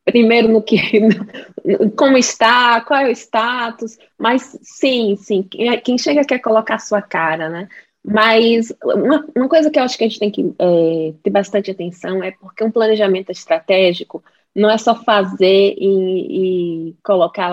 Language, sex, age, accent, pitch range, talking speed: Portuguese, female, 20-39, Brazilian, 195-250 Hz, 165 wpm